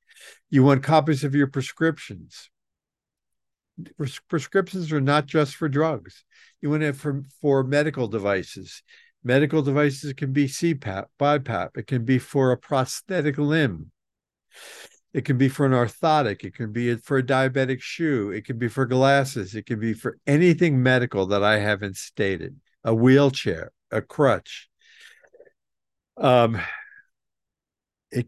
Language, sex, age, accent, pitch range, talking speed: English, male, 50-69, American, 115-145 Hz, 140 wpm